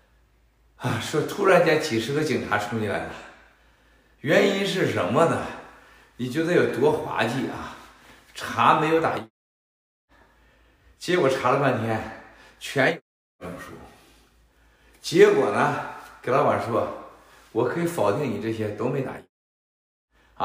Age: 60-79